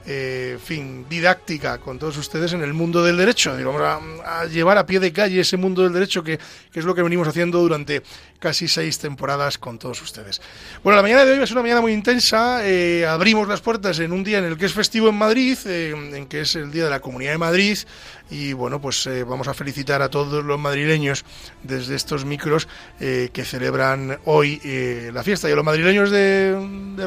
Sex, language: male, Spanish